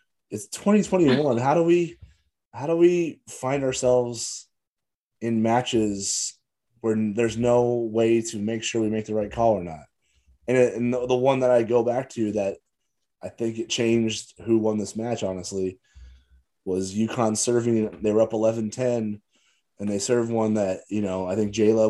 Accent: American